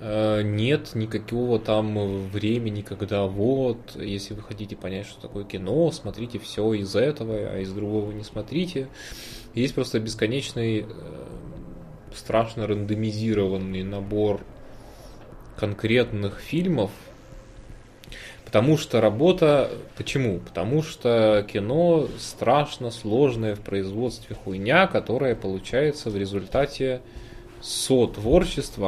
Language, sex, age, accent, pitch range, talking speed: Russian, male, 20-39, native, 105-120 Hz, 100 wpm